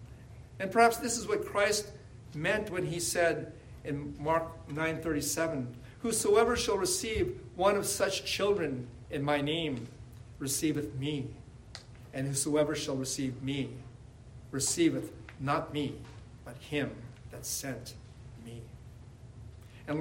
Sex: male